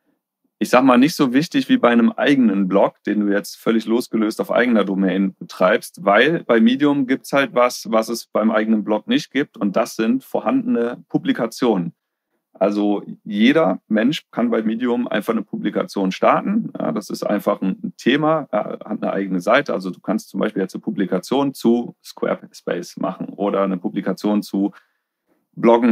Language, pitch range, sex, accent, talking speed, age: German, 105-140 Hz, male, German, 175 wpm, 30-49